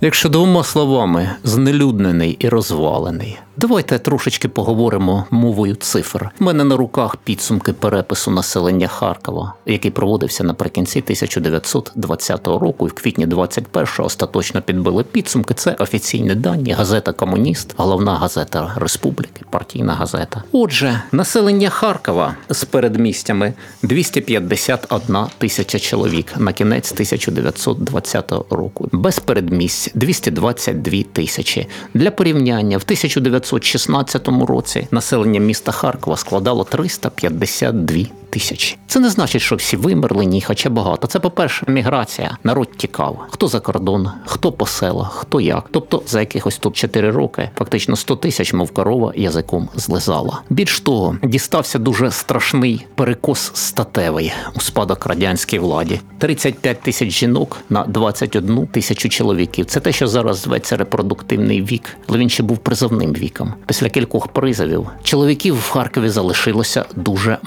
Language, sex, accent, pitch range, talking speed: Ukrainian, male, native, 95-130 Hz, 125 wpm